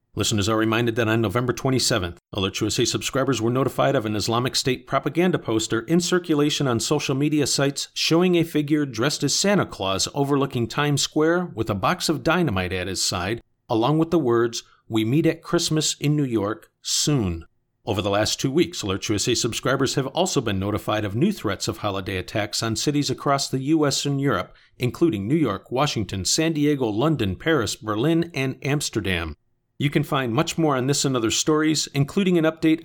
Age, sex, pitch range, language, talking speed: 50-69, male, 115-155 Hz, English, 190 wpm